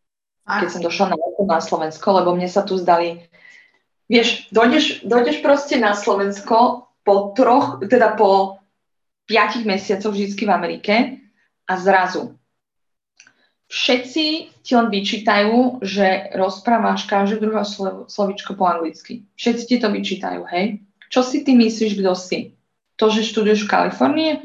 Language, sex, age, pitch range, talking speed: Slovak, female, 20-39, 195-245 Hz, 135 wpm